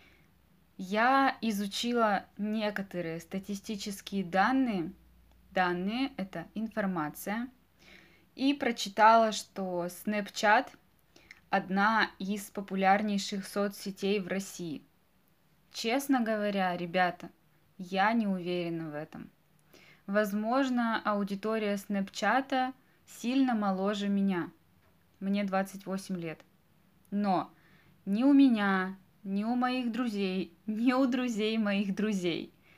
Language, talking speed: Russian, 90 wpm